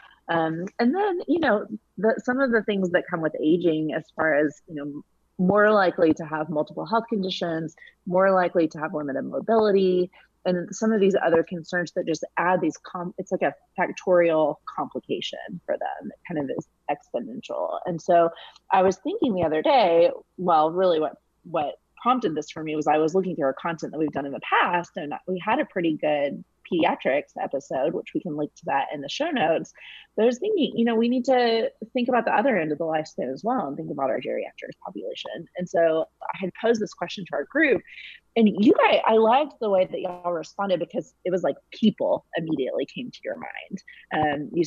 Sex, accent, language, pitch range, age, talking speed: female, American, English, 160-215 Hz, 30-49, 210 wpm